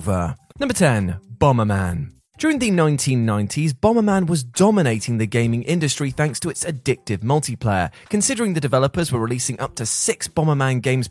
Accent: British